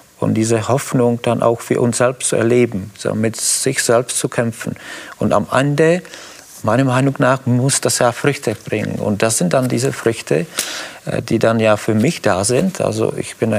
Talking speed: 190 wpm